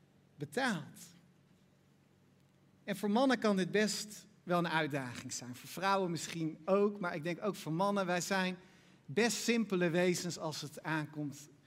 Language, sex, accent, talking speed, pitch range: Dutch, male, Dutch, 150 wpm, 175-225 Hz